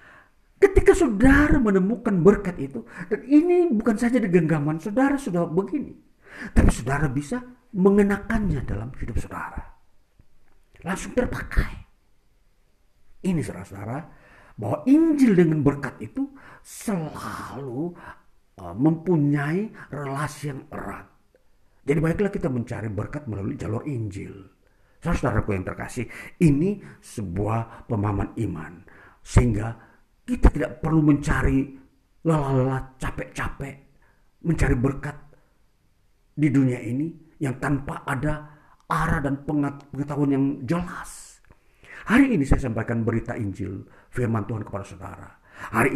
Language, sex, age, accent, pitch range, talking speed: Indonesian, male, 50-69, native, 110-165 Hz, 105 wpm